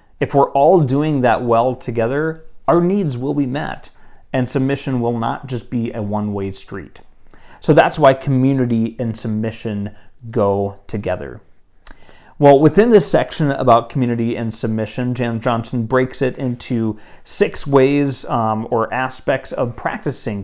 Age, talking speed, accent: 30-49, 145 wpm, American